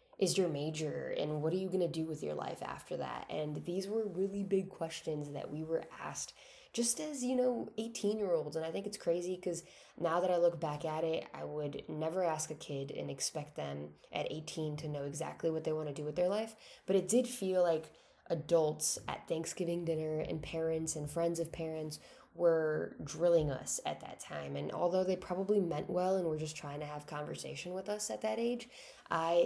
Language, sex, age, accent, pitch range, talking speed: English, female, 10-29, American, 155-190 Hz, 215 wpm